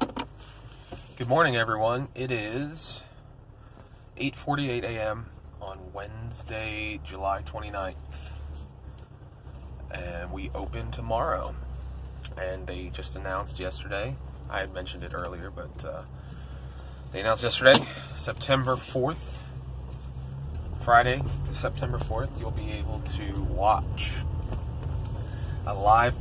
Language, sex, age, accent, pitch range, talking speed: English, male, 30-49, American, 70-115 Hz, 95 wpm